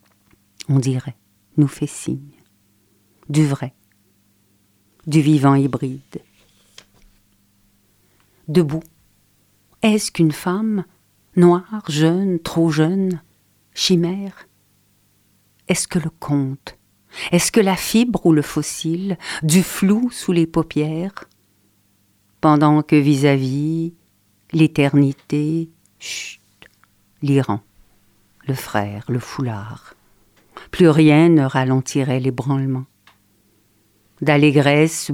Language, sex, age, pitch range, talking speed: French, female, 50-69, 100-155 Hz, 85 wpm